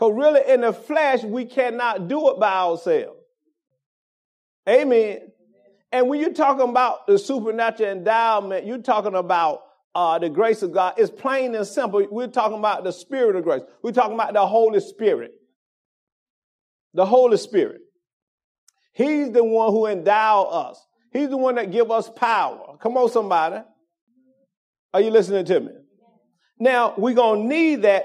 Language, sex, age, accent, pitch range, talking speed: English, male, 40-59, American, 200-270 Hz, 160 wpm